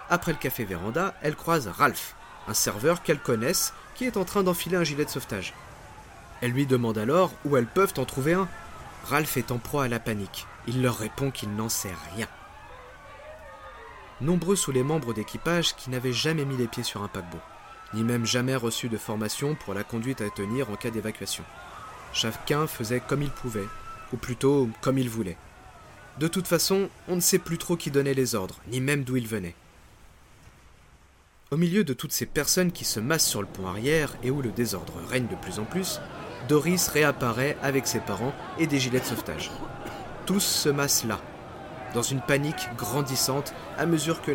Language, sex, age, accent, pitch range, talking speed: French, male, 40-59, French, 110-150 Hz, 190 wpm